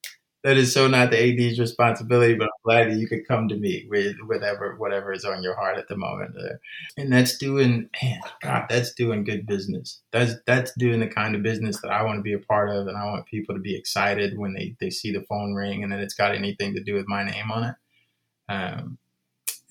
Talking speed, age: 235 wpm, 20-39